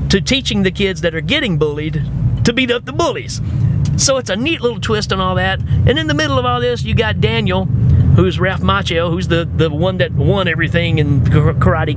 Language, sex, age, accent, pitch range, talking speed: English, male, 40-59, American, 125-140 Hz, 220 wpm